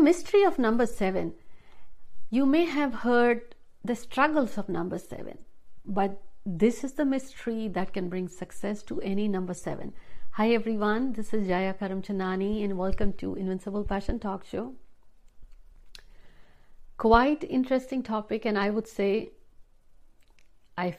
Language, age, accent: Hindi, 60-79, native